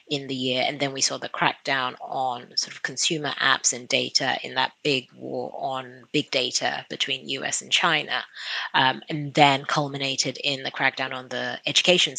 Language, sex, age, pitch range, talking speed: English, female, 30-49, 130-145 Hz, 180 wpm